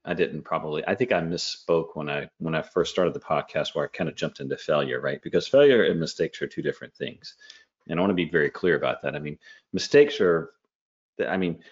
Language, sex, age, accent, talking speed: English, male, 30-49, American, 240 wpm